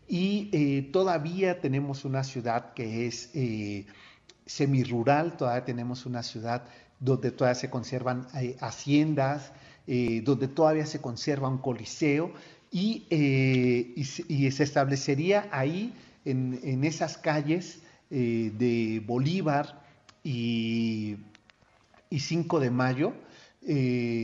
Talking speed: 115 wpm